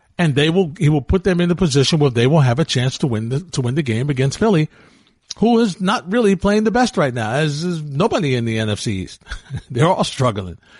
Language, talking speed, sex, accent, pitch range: English, 245 wpm, male, American, 120-170 Hz